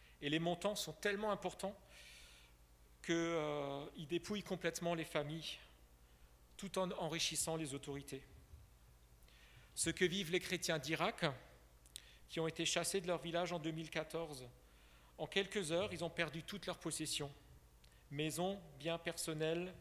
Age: 40-59